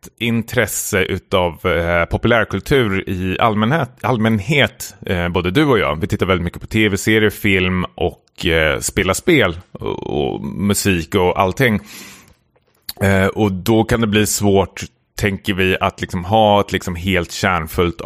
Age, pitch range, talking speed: 30-49, 85-110 Hz, 145 wpm